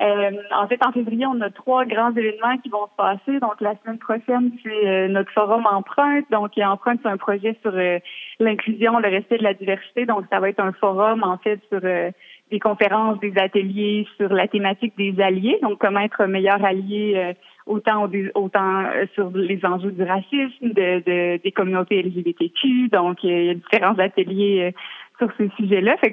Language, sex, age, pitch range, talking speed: French, female, 30-49, 195-230 Hz, 195 wpm